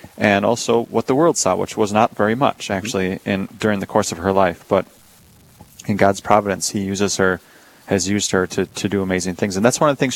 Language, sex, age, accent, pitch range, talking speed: English, male, 30-49, American, 95-115 Hz, 235 wpm